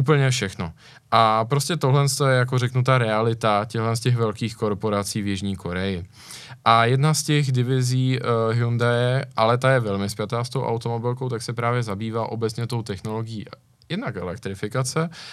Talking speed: 155 wpm